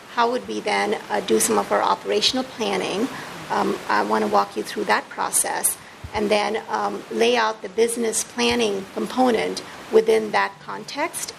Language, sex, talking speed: English, female, 170 wpm